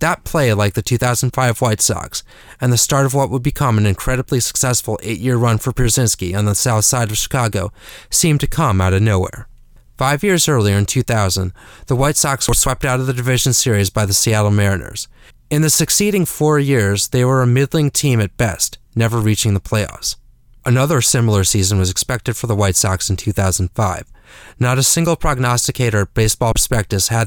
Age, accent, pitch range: 30-49, American, 105-130 Hz